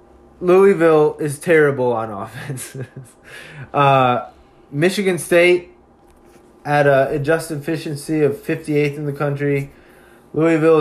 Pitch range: 125-160 Hz